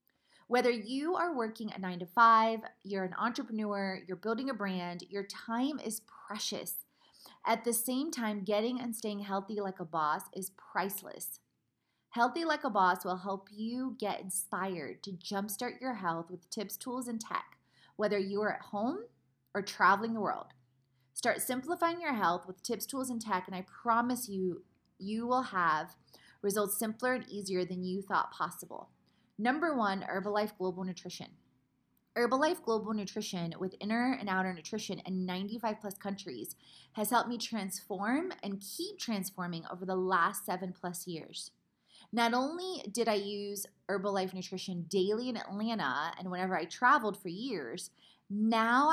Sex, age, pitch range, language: female, 30-49, 185-235 Hz, English